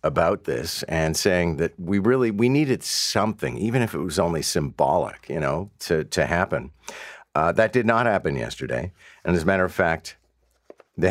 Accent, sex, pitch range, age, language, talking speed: American, male, 80-95 Hz, 50-69, English, 185 wpm